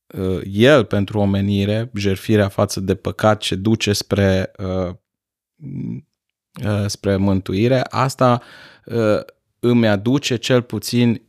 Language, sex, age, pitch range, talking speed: Romanian, male, 30-49, 100-120 Hz, 90 wpm